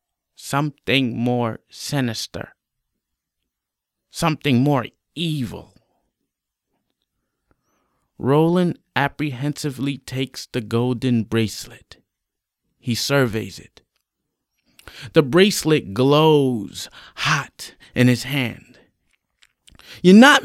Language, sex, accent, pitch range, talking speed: English, male, American, 125-195 Hz, 70 wpm